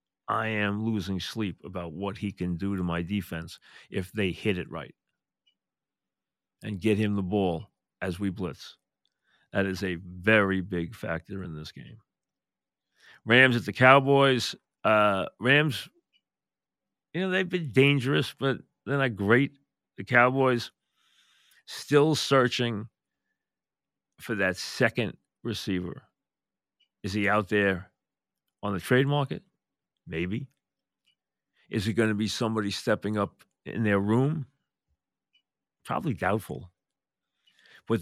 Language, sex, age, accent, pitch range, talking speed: English, male, 40-59, American, 100-135 Hz, 125 wpm